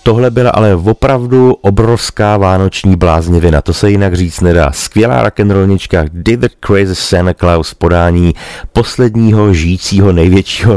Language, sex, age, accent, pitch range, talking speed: Czech, male, 40-59, native, 80-105 Hz, 125 wpm